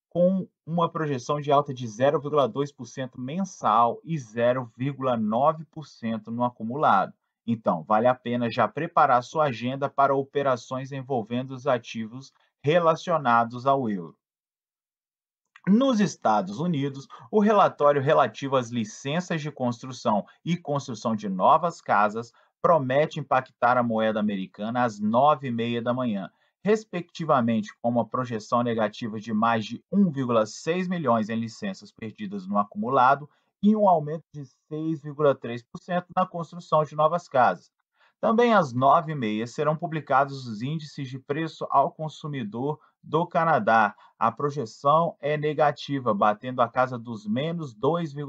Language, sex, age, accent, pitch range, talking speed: Portuguese, male, 30-49, Brazilian, 120-160 Hz, 125 wpm